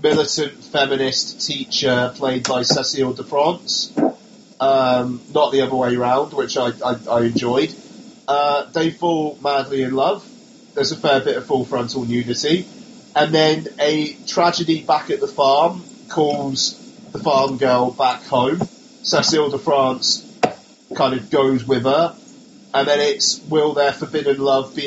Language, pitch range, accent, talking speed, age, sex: English, 130-200 Hz, British, 150 wpm, 30-49, male